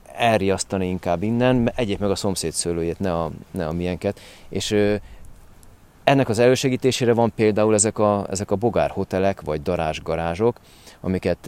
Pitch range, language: 90-110 Hz, Hungarian